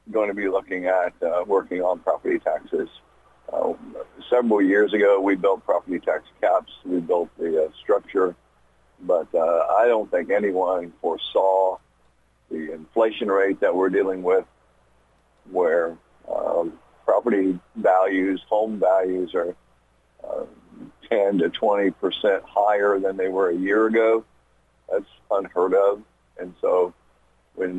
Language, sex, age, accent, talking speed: English, male, 50-69, American, 135 wpm